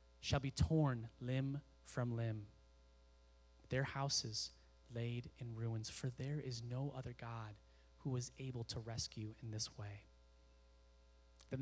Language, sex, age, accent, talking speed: English, male, 30-49, American, 135 wpm